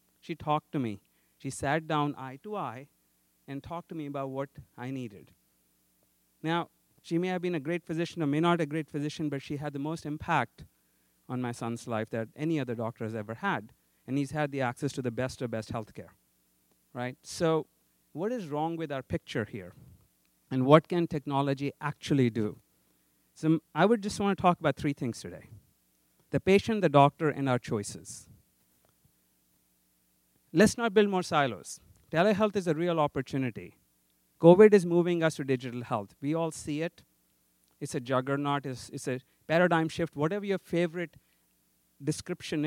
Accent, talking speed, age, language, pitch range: Indian, 175 wpm, 50-69, English, 105-160 Hz